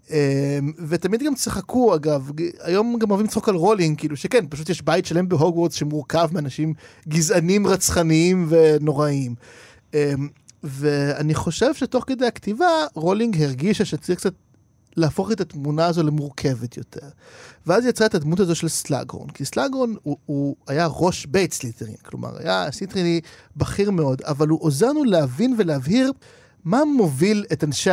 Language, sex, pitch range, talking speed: Hebrew, male, 150-215 Hz, 140 wpm